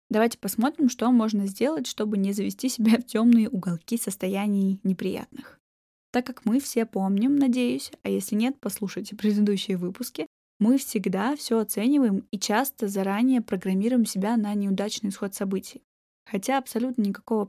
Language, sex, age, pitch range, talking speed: Russian, female, 10-29, 200-245 Hz, 145 wpm